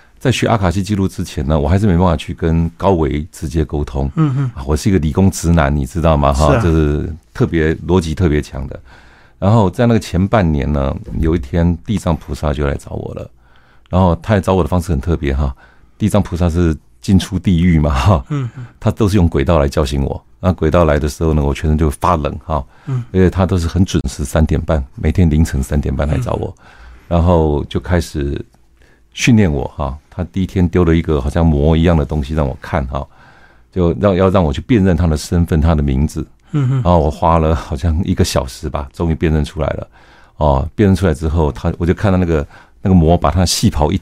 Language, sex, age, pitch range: Chinese, male, 50-69, 75-95 Hz